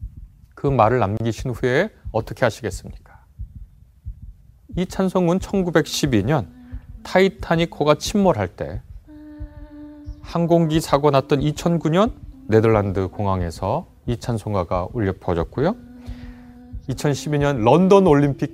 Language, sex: Korean, male